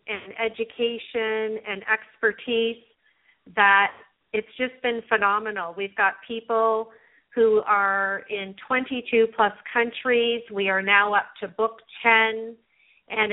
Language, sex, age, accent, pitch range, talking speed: English, female, 40-59, American, 195-230 Hz, 115 wpm